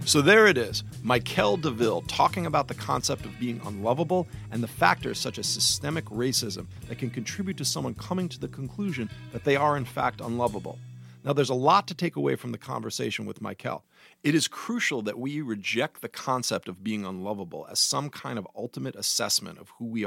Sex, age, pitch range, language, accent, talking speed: male, 40-59, 110-155 Hz, English, American, 200 wpm